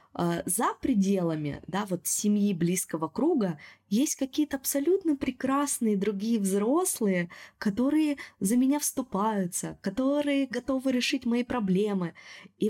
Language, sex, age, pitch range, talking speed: Russian, female, 20-39, 170-220 Hz, 110 wpm